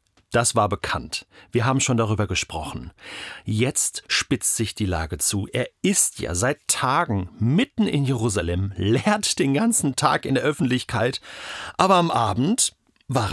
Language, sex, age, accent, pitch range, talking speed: German, male, 40-59, German, 110-160 Hz, 150 wpm